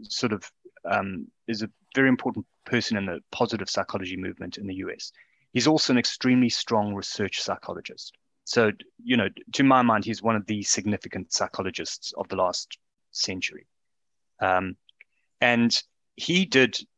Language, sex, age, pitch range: English, male, 30-49, 105-130 Hz